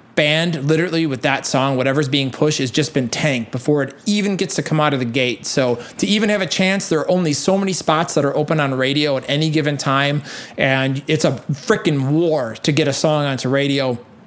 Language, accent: English, American